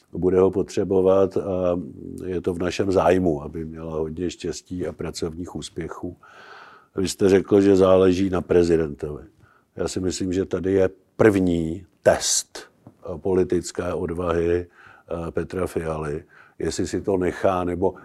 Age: 50-69